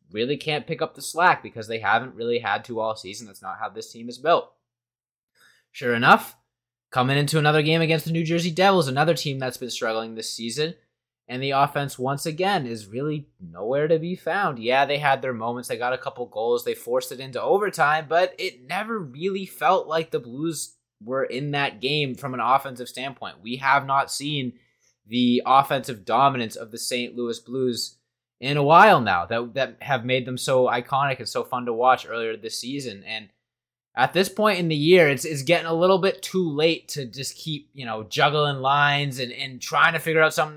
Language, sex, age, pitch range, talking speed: English, male, 20-39, 120-160 Hz, 210 wpm